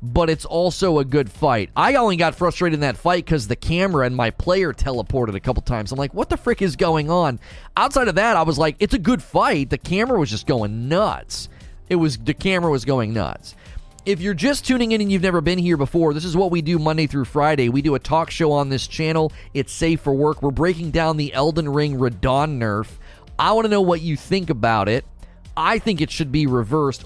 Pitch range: 125-160 Hz